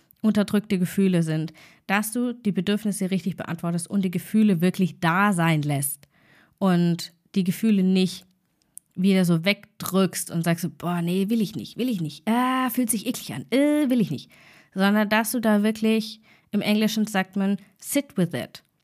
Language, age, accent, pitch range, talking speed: German, 20-39, German, 175-220 Hz, 170 wpm